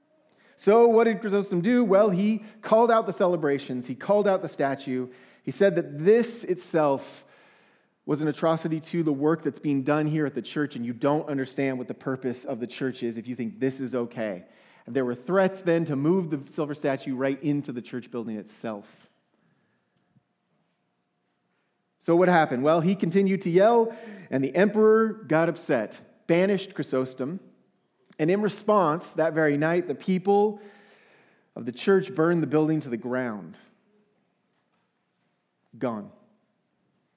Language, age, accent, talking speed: English, 30-49, American, 160 wpm